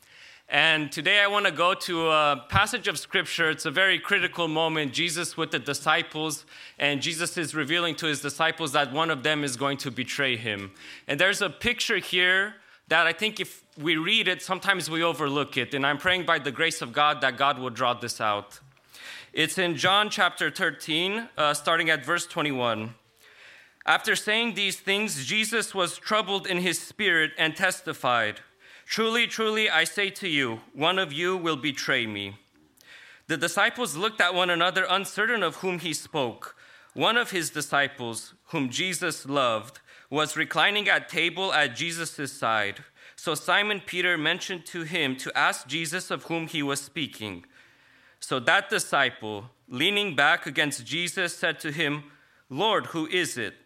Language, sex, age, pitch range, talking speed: English, male, 20-39, 145-185 Hz, 170 wpm